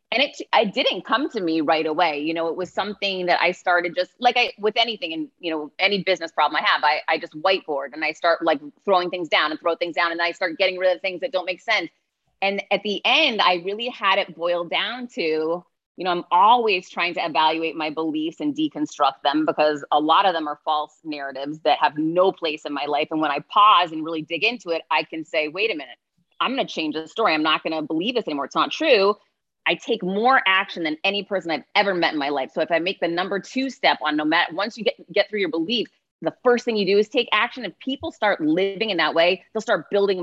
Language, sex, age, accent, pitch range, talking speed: English, female, 30-49, American, 160-210 Hz, 260 wpm